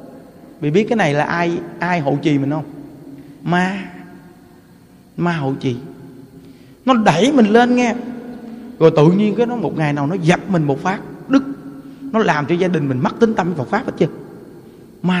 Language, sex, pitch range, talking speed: Vietnamese, male, 170-240 Hz, 190 wpm